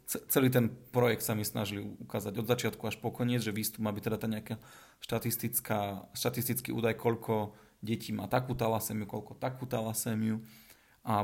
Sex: male